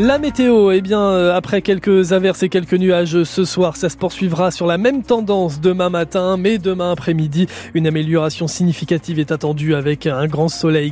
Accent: French